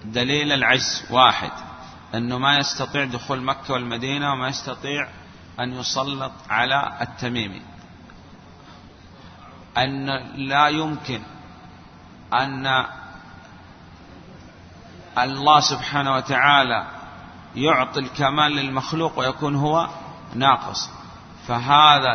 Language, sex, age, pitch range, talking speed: Arabic, male, 40-59, 120-145 Hz, 80 wpm